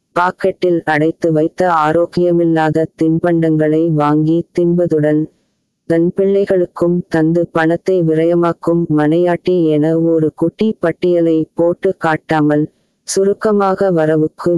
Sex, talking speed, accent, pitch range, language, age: female, 80 wpm, native, 155-180 Hz, Tamil, 20-39